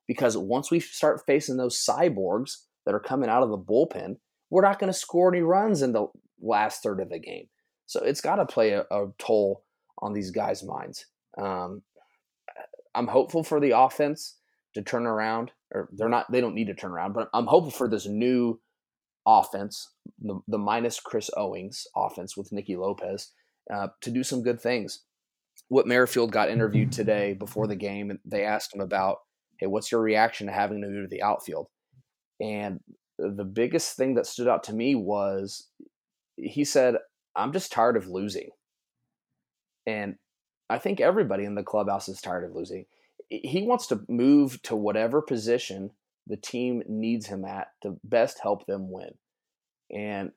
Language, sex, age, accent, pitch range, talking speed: English, male, 30-49, American, 100-130 Hz, 180 wpm